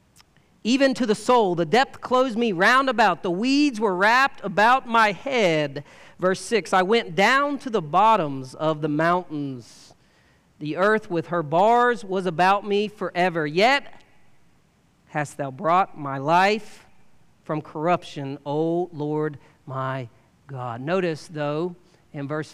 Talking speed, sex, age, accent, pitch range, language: 140 wpm, male, 40-59, American, 150-220 Hz, English